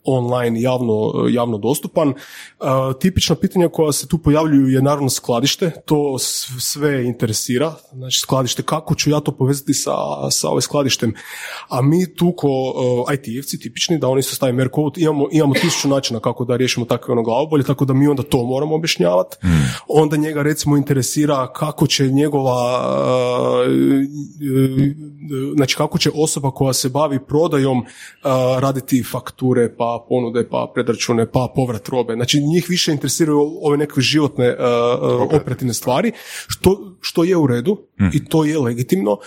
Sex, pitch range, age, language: male, 125-150 Hz, 30-49, Croatian